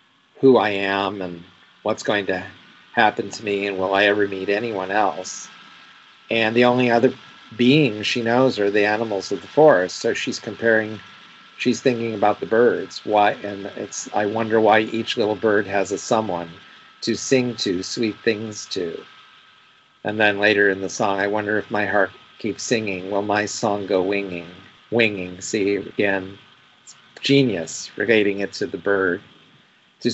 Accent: American